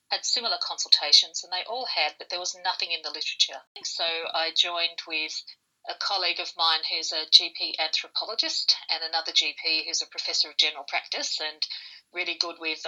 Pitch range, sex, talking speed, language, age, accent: 160-195 Hz, female, 180 wpm, English, 50-69, Australian